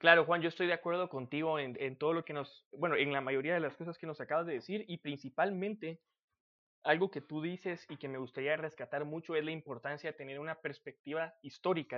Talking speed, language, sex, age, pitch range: 225 wpm, Spanish, male, 20-39, 140-185 Hz